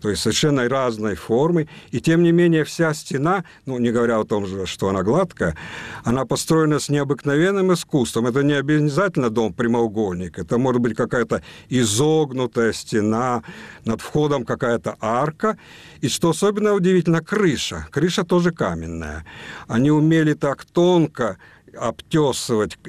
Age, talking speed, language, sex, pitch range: 50-69, 135 wpm, Russian, male, 120-165 Hz